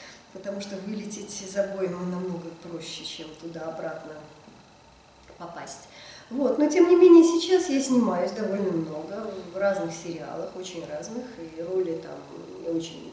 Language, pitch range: Russian, 170-245 Hz